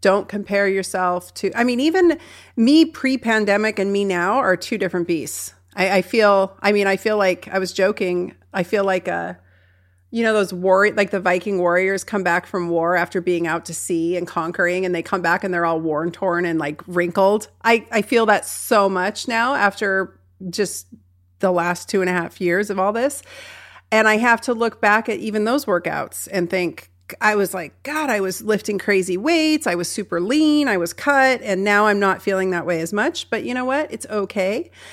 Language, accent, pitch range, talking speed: English, American, 175-215 Hz, 210 wpm